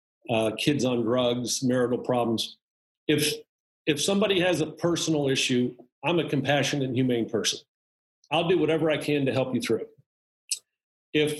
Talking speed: 155 wpm